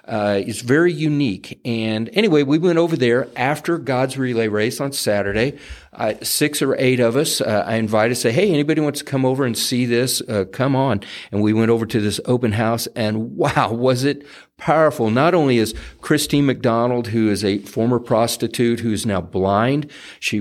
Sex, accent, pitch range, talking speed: male, American, 105-130 Hz, 190 wpm